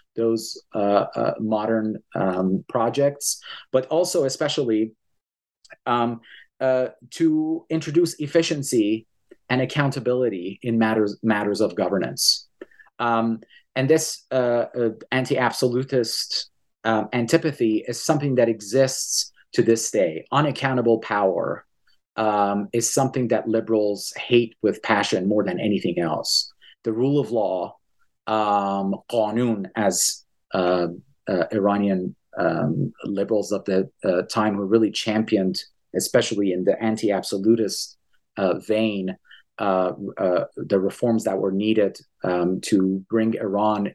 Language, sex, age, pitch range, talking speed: English, male, 30-49, 100-120 Hz, 115 wpm